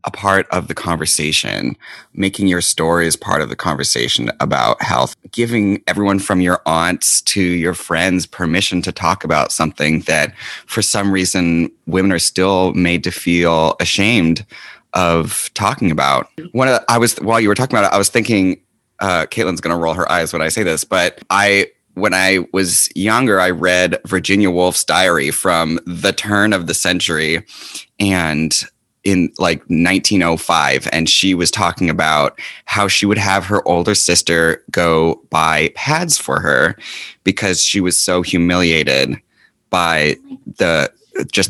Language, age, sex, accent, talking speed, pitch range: English, 30-49, male, American, 160 wpm, 85-100 Hz